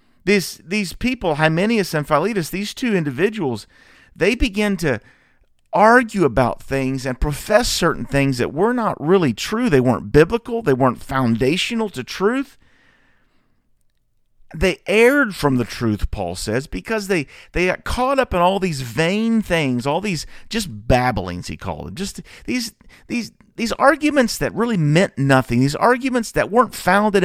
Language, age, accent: English, 40-59, American